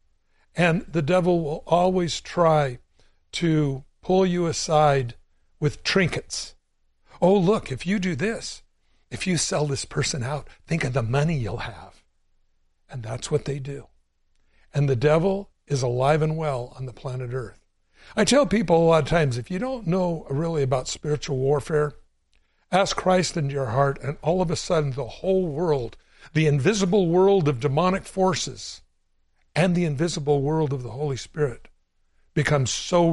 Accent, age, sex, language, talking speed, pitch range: American, 60-79, male, English, 165 wpm, 130-180 Hz